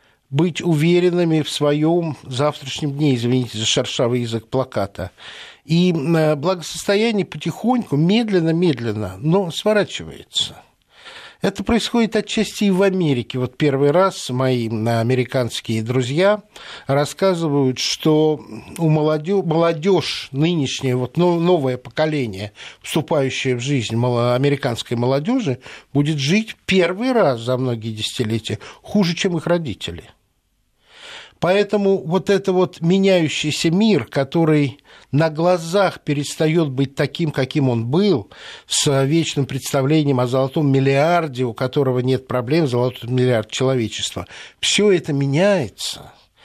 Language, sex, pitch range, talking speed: Russian, male, 125-180 Hz, 110 wpm